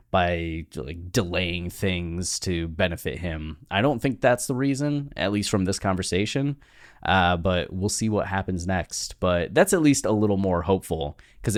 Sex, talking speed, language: male, 175 wpm, English